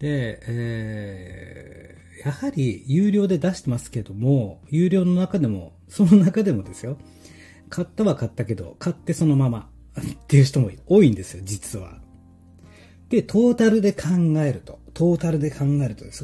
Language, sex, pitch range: Japanese, male, 100-140 Hz